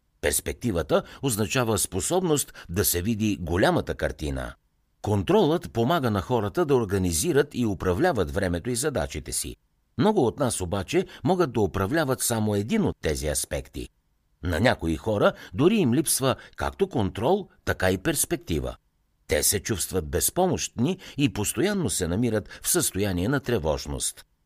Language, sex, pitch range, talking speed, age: Bulgarian, male, 85-130 Hz, 135 wpm, 60-79